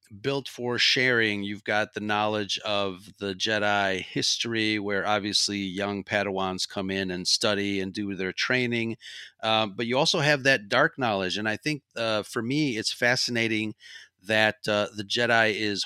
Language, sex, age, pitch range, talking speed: English, male, 40-59, 100-125 Hz, 165 wpm